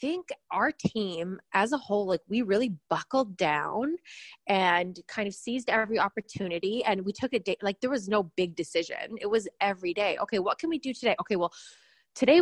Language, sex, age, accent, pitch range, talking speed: English, female, 20-39, American, 180-235 Hz, 205 wpm